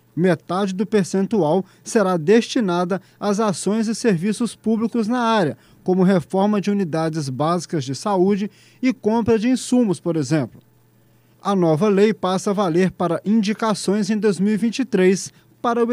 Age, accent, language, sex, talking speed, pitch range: 20-39, Brazilian, Portuguese, male, 140 wpm, 155-230 Hz